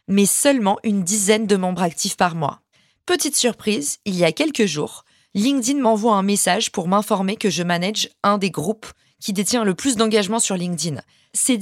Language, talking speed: French, 185 wpm